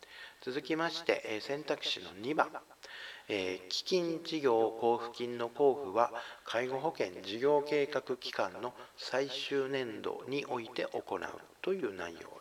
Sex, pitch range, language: male, 110-165 Hz, Japanese